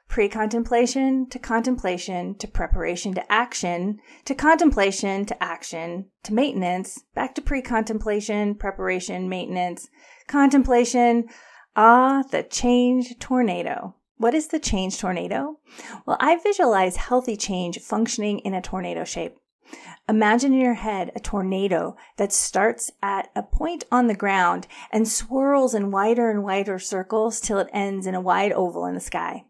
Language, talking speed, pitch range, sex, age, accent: English, 140 wpm, 200-255 Hz, female, 30-49, American